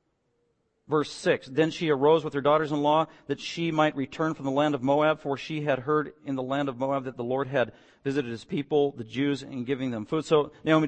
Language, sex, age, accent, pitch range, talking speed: English, male, 50-69, American, 135-210 Hz, 225 wpm